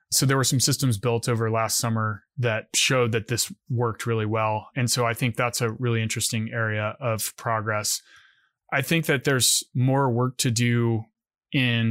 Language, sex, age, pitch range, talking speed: English, male, 20-39, 110-130 Hz, 180 wpm